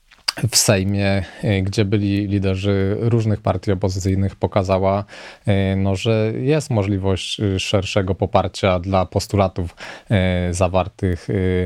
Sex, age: male, 20-39